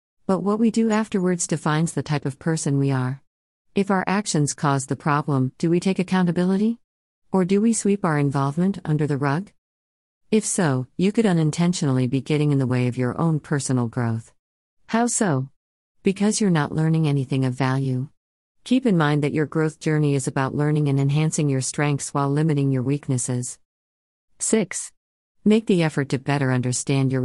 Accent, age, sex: American, 50-69, female